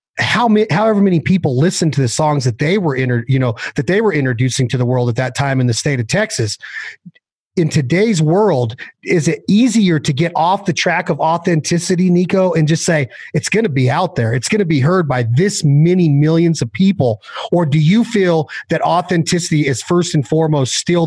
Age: 30-49